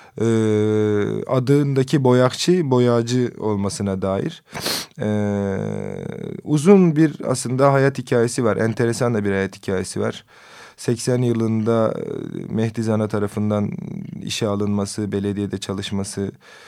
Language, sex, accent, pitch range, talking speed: Turkish, male, native, 105-135 Hz, 100 wpm